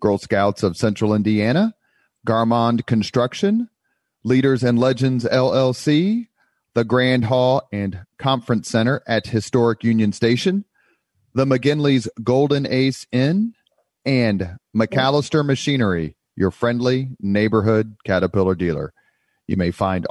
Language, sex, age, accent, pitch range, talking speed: English, male, 40-59, American, 105-135 Hz, 110 wpm